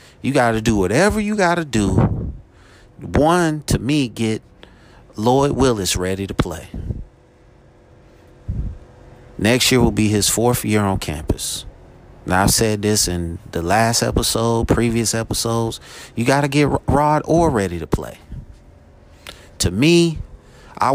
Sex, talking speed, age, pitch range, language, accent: male, 145 wpm, 30-49, 95-120 Hz, English, American